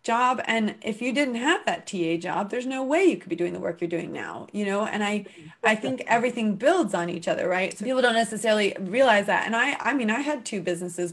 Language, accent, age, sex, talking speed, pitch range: English, American, 20-39, female, 255 wpm, 185-225 Hz